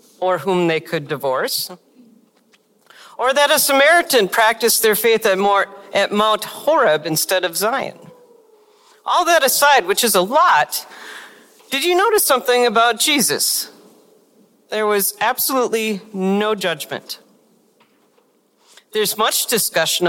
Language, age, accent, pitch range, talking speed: English, 40-59, American, 185-240 Hz, 115 wpm